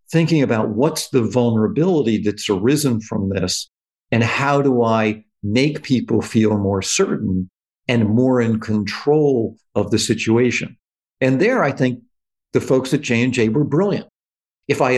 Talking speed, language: 155 wpm, English